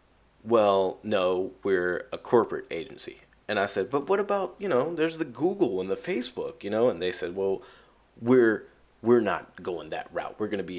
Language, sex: English, male